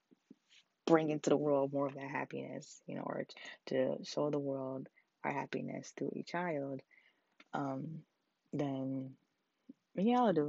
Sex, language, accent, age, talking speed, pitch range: female, English, American, 20-39, 145 wpm, 140-170 Hz